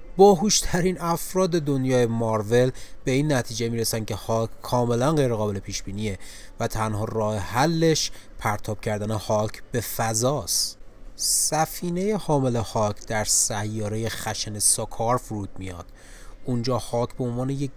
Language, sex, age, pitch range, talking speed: Persian, male, 30-49, 105-125 Hz, 130 wpm